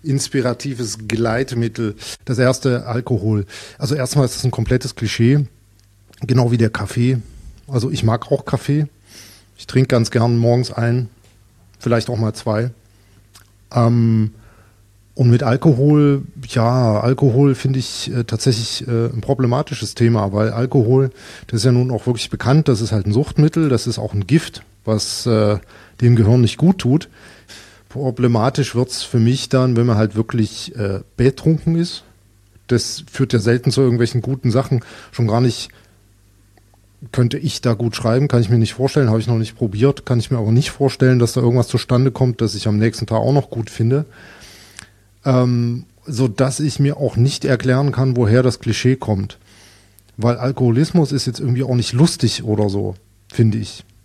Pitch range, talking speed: 110-130 Hz, 165 wpm